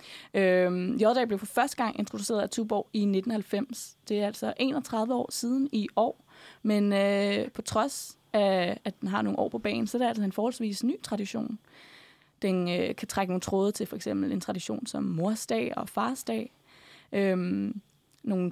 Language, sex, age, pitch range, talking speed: Danish, female, 20-39, 190-230 Hz, 180 wpm